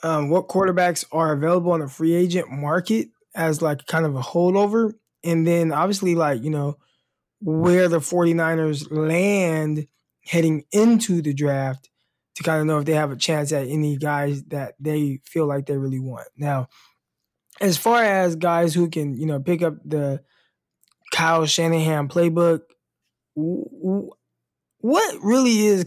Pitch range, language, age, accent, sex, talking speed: 145-175 Hz, English, 20-39, American, male, 155 wpm